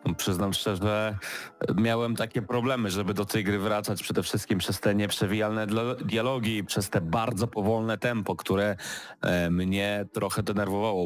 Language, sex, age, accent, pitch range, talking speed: Polish, male, 30-49, native, 95-110 Hz, 135 wpm